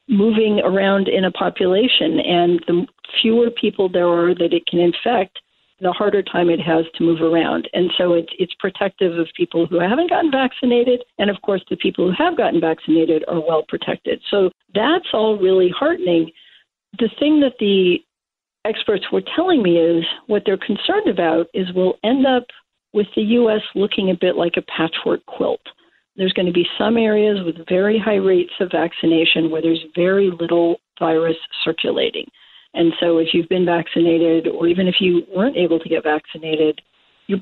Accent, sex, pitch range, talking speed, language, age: American, female, 170-220 Hz, 180 wpm, English, 50-69